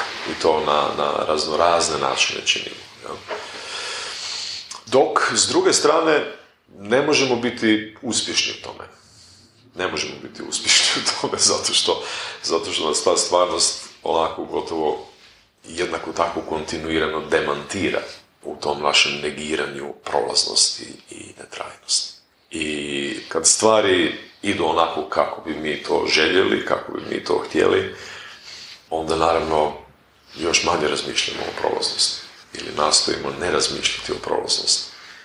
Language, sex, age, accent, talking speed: Croatian, male, 40-59, native, 125 wpm